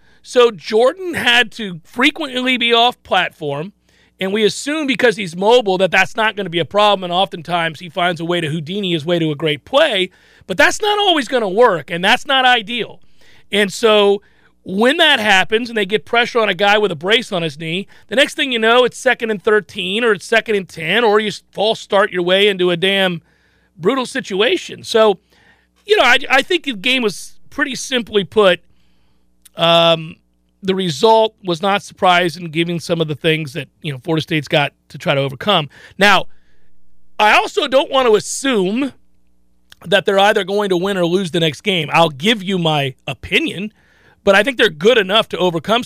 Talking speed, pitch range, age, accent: 200 wpm, 165-225 Hz, 40-59, American